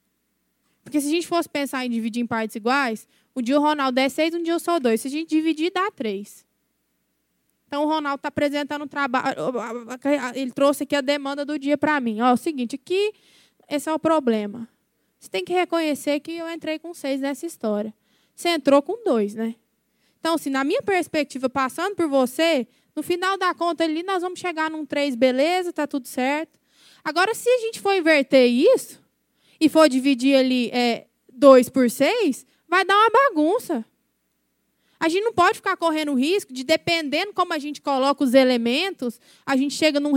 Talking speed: 195 wpm